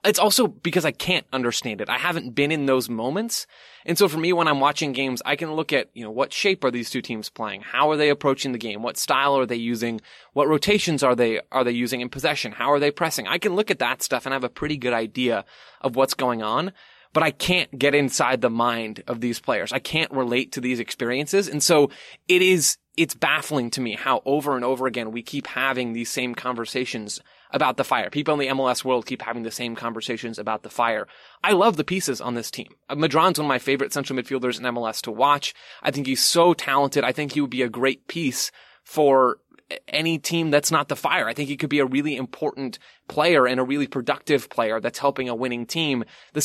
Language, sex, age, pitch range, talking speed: English, male, 20-39, 120-150 Hz, 235 wpm